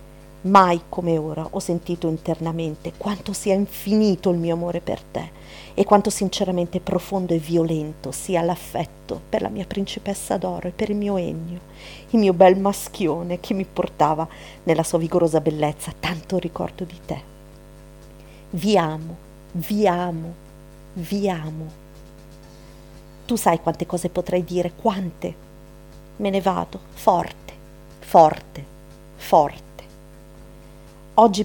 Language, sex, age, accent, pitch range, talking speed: Italian, female, 40-59, native, 160-195 Hz, 130 wpm